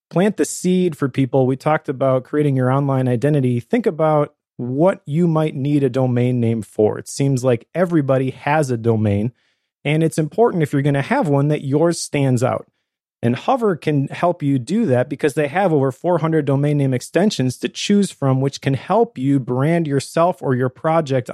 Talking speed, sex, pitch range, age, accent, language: 195 wpm, male, 130-160 Hz, 30-49, American, English